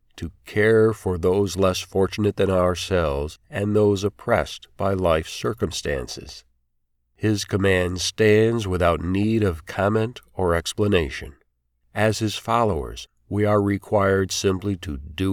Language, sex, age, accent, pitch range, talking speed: English, male, 40-59, American, 85-105 Hz, 125 wpm